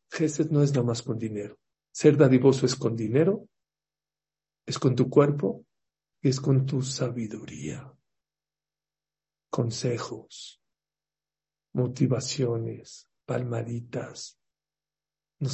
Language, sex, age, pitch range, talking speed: Spanish, male, 50-69, 130-155 Hz, 95 wpm